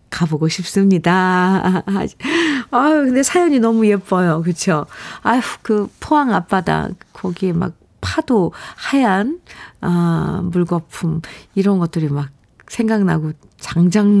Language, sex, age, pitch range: Korean, female, 40-59, 175-225 Hz